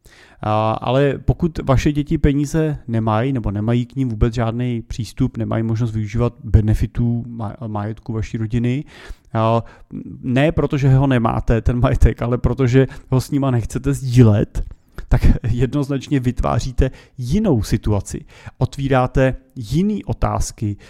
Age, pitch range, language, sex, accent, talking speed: 30-49, 115-135 Hz, Czech, male, native, 120 wpm